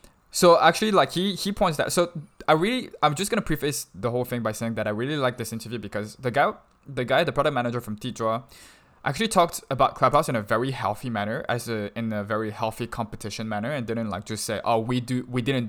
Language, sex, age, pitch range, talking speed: English, male, 20-39, 110-135 Hz, 235 wpm